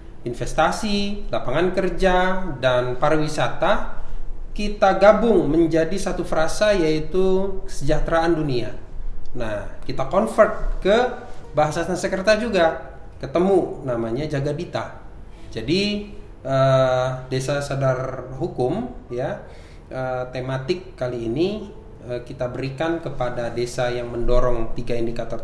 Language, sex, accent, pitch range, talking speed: Indonesian, male, native, 115-170 Hz, 100 wpm